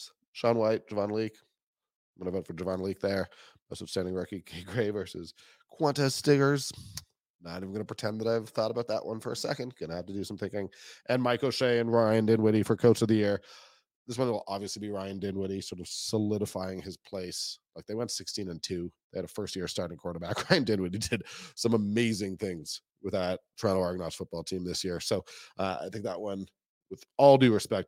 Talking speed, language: 215 wpm, English